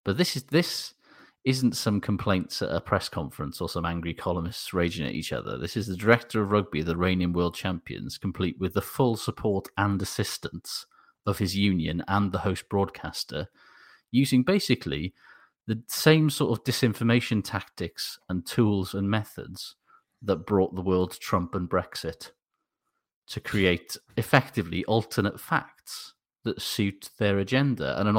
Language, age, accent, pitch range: English, 30-49, British, 95-120 Hz